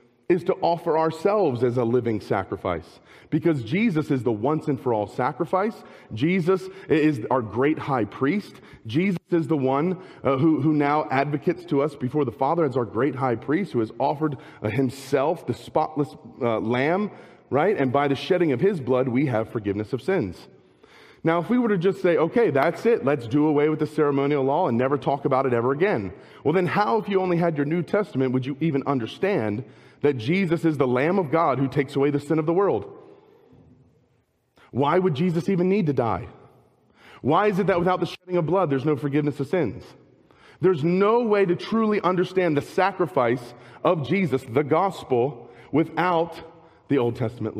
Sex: male